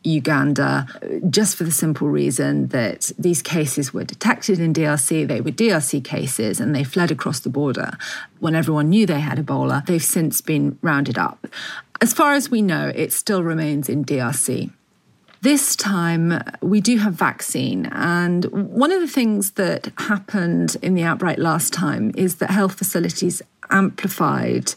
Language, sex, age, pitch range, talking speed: English, female, 40-59, 155-210 Hz, 160 wpm